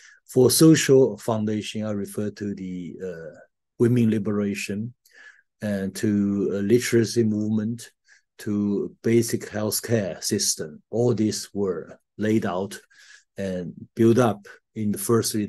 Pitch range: 100-120 Hz